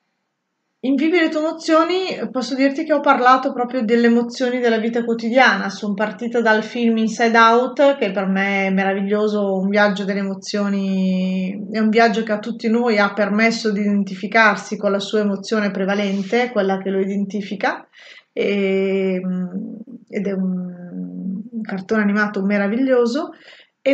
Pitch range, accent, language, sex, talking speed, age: 200-240 Hz, native, Italian, female, 150 wpm, 20-39